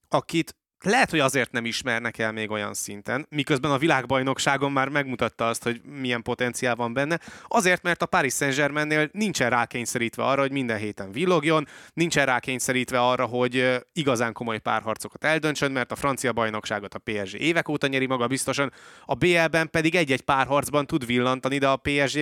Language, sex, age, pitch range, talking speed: Hungarian, male, 20-39, 120-145 Hz, 170 wpm